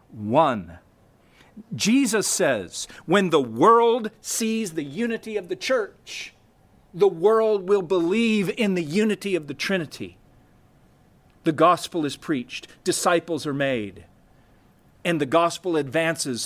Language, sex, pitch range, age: English, male, 150-200 Hz, 50-69